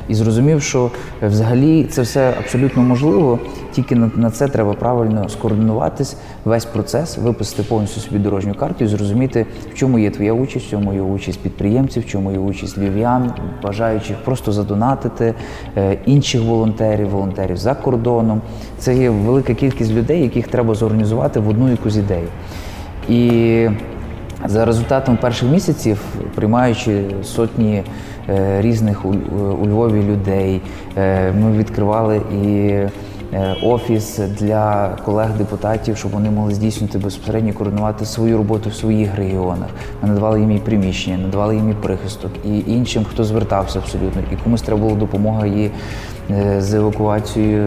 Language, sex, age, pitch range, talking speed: Ukrainian, male, 20-39, 100-115 Hz, 135 wpm